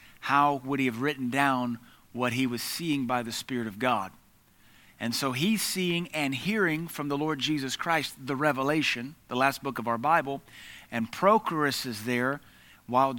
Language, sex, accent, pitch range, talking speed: English, male, American, 125-150 Hz, 175 wpm